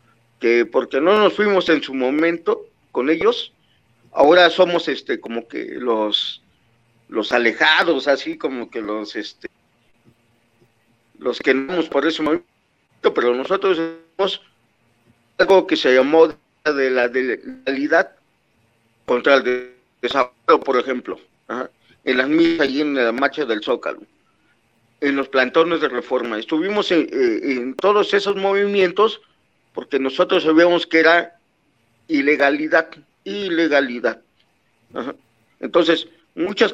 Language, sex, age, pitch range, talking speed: Spanish, male, 50-69, 130-185 Hz, 125 wpm